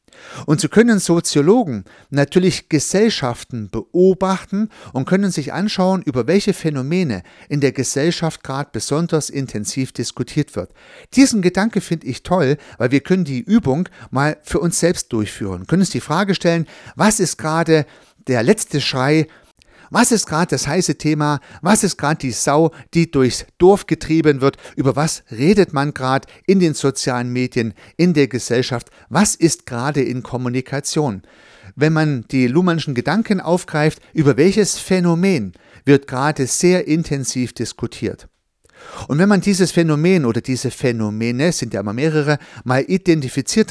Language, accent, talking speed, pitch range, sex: German, German, 150 wpm, 125-170 Hz, male